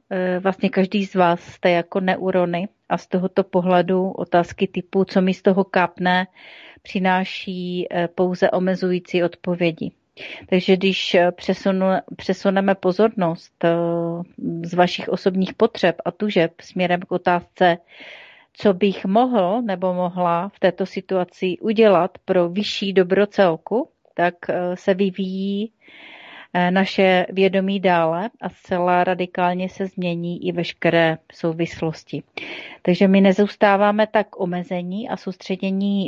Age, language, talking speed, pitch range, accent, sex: 30-49, Czech, 115 wpm, 175-200 Hz, native, female